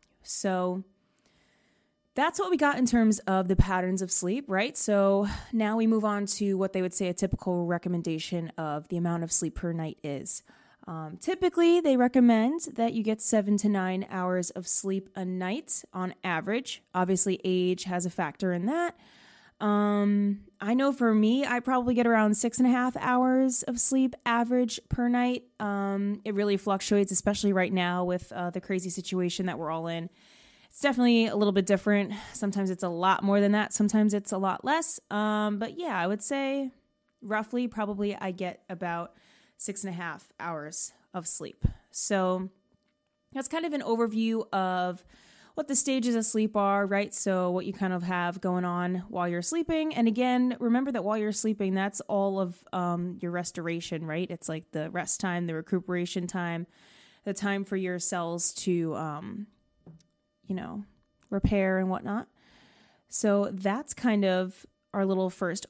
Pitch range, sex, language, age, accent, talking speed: 180-225 Hz, female, English, 20-39, American, 180 wpm